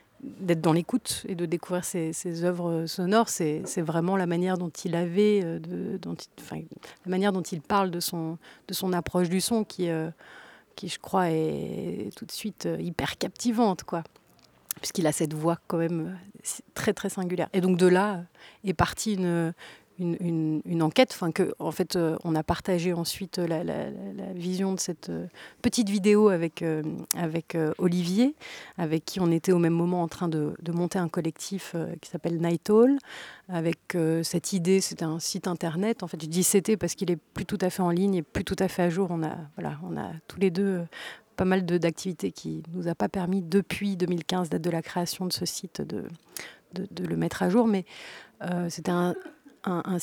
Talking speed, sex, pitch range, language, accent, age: 210 wpm, female, 170-195 Hz, French, French, 30-49